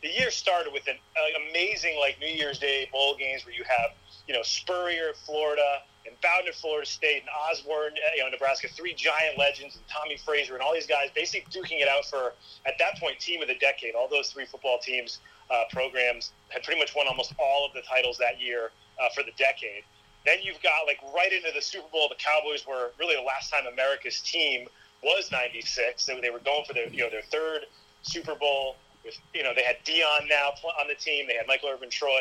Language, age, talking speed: English, 30-49, 225 wpm